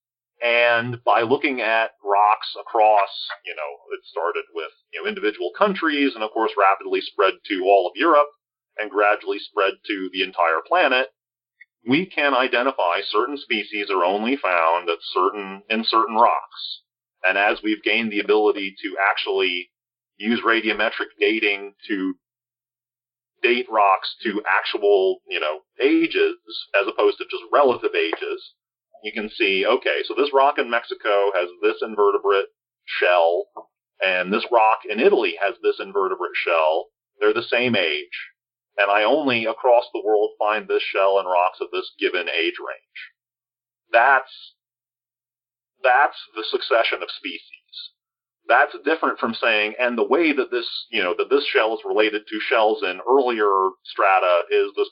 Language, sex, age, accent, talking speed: English, male, 40-59, American, 155 wpm